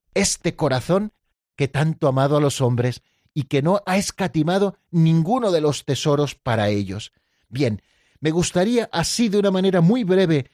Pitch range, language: 130-170 Hz, Spanish